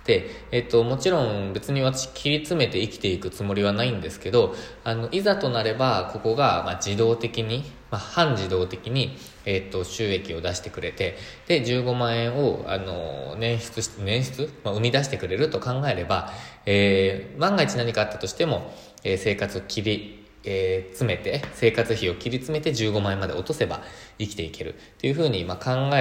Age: 20-39